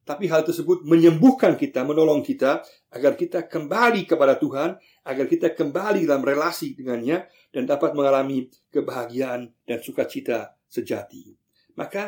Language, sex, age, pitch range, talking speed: Indonesian, male, 50-69, 135-190 Hz, 130 wpm